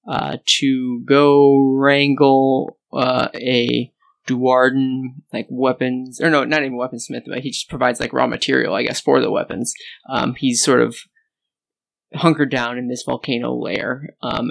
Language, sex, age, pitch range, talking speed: English, male, 20-39, 125-140 Hz, 155 wpm